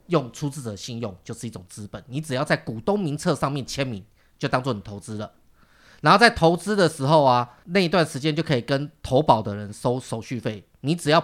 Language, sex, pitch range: Chinese, male, 110-145 Hz